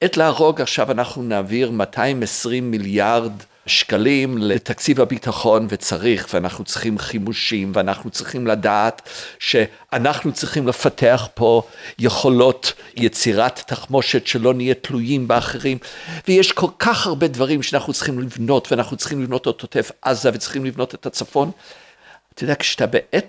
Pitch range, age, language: 120-205 Hz, 50-69, Hebrew